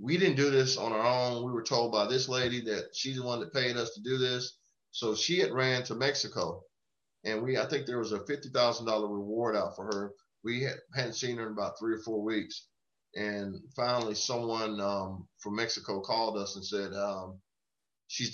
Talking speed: 205 wpm